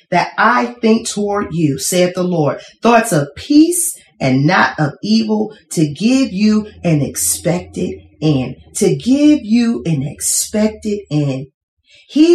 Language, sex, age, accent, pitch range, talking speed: English, female, 30-49, American, 165-215 Hz, 135 wpm